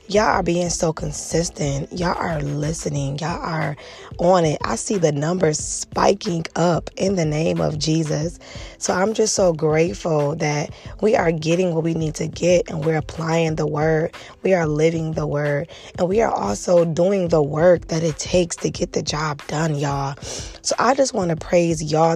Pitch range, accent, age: 160-190 Hz, American, 20-39